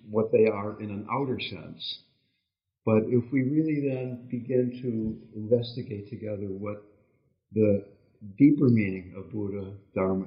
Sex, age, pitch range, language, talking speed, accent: male, 60-79, 100-125 Hz, English, 135 wpm, American